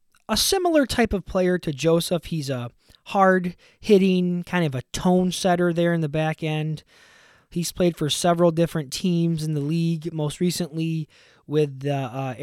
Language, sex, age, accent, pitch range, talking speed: English, male, 20-39, American, 145-175 Hz, 160 wpm